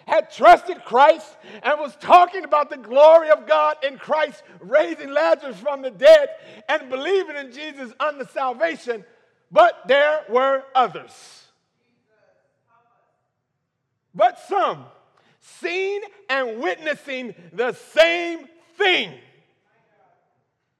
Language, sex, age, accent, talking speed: English, male, 50-69, American, 105 wpm